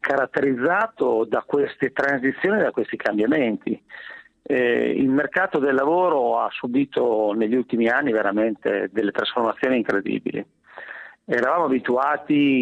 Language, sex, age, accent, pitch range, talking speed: Italian, male, 40-59, native, 110-140 Hz, 110 wpm